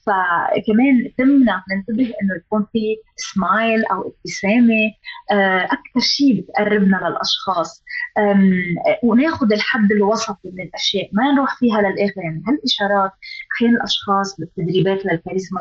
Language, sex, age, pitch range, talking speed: Arabic, female, 20-39, 195-250 Hz, 110 wpm